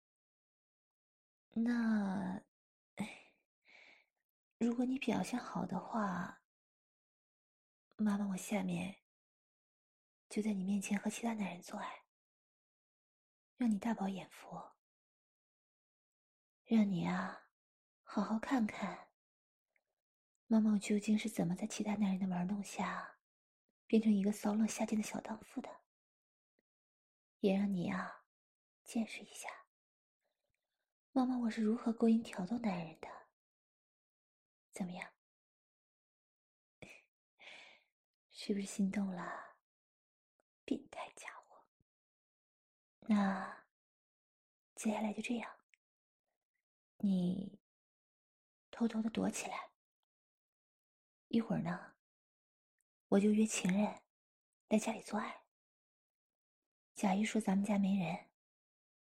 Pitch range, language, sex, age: 195-225 Hz, English, female, 20-39